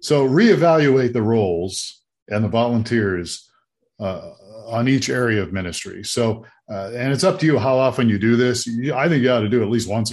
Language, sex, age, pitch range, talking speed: English, male, 40-59, 105-135 Hz, 205 wpm